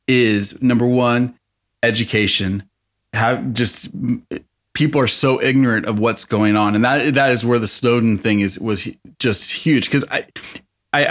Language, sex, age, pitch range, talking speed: English, male, 30-49, 105-145 Hz, 155 wpm